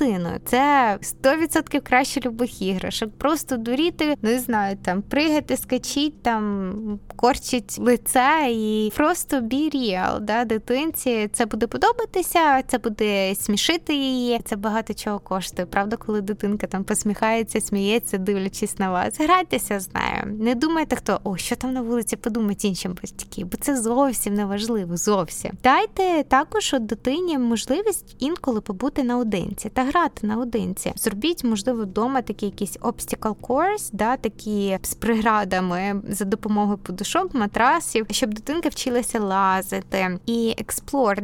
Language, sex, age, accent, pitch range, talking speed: Ukrainian, female, 20-39, native, 210-280 Hz, 135 wpm